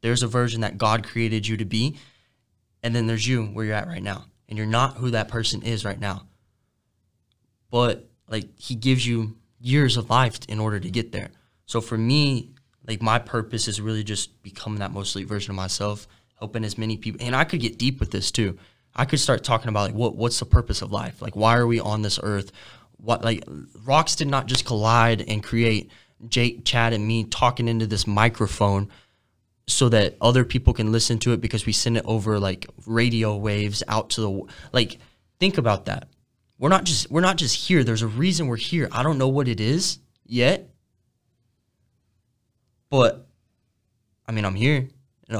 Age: 10-29